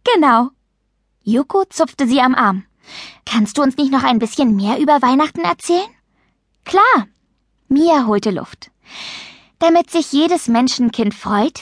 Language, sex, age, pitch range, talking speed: German, female, 10-29, 205-290 Hz, 135 wpm